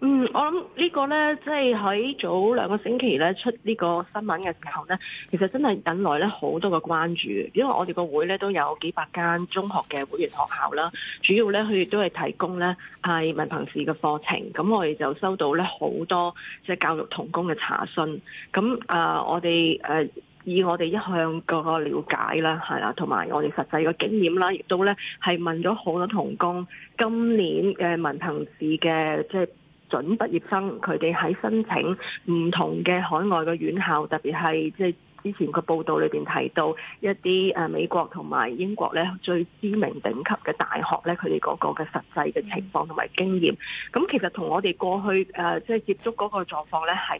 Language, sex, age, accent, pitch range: Chinese, female, 20-39, native, 165-205 Hz